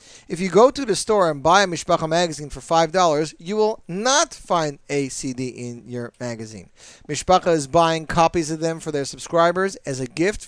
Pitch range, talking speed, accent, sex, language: 150-205 Hz, 195 wpm, American, male, English